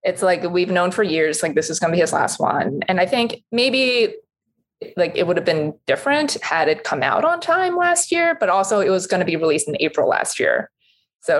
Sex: female